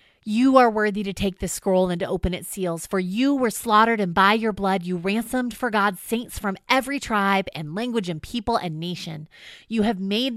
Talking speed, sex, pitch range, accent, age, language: 215 wpm, female, 160-215 Hz, American, 30-49, English